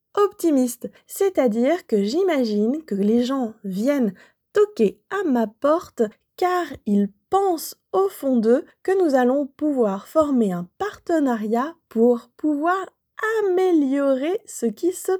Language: French